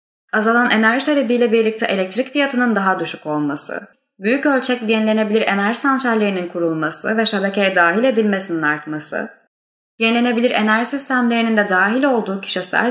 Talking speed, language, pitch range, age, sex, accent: 125 wpm, Turkish, 185-250 Hz, 10-29, female, native